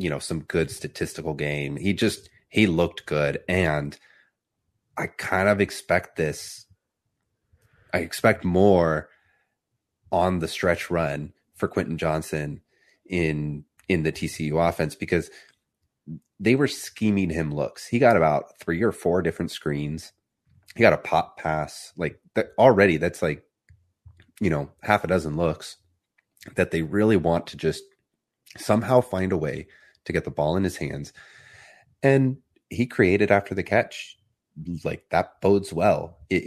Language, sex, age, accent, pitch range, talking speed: English, male, 30-49, American, 80-95 Hz, 145 wpm